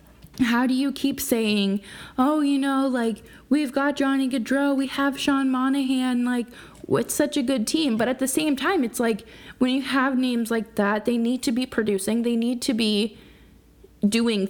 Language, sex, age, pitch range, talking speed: English, female, 20-39, 200-260 Hz, 190 wpm